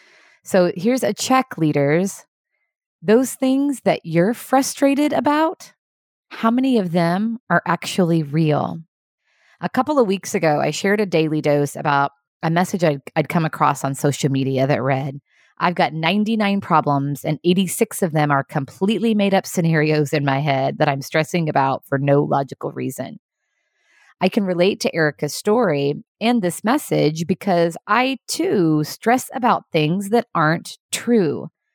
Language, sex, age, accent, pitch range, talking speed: English, female, 30-49, American, 150-215 Hz, 155 wpm